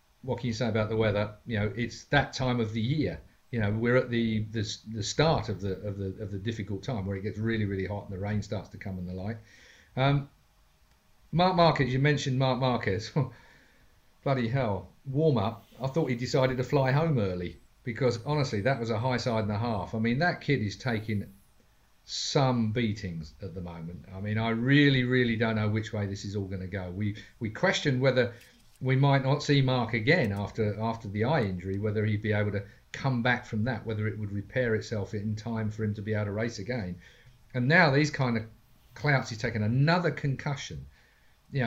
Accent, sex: British, male